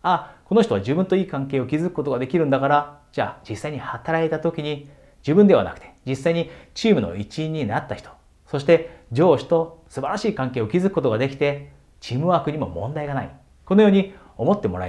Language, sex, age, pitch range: Japanese, male, 40-59, 100-150 Hz